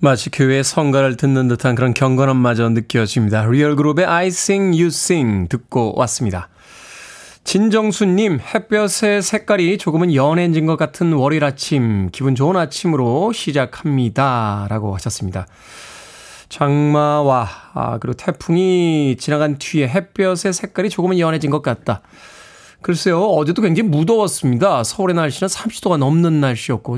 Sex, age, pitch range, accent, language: male, 20-39, 130-175 Hz, native, Korean